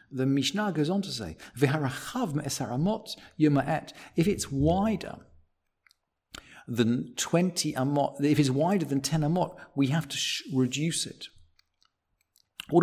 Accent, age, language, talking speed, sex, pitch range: British, 50-69, English, 115 wpm, male, 125-165 Hz